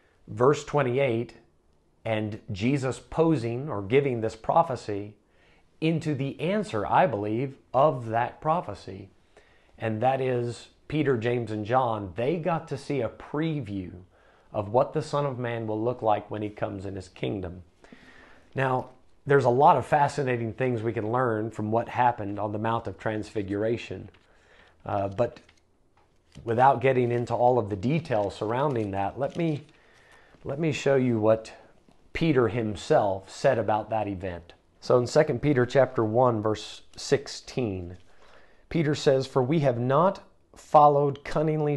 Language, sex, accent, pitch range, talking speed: English, male, American, 105-140 Hz, 150 wpm